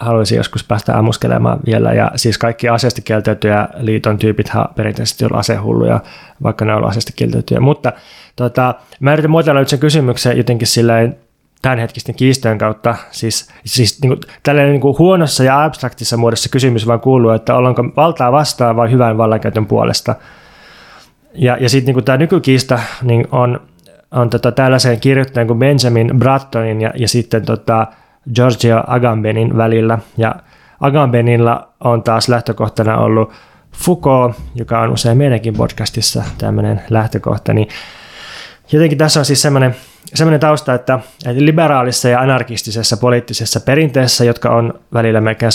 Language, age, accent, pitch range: Finnish, 20-39, native, 115-130 Hz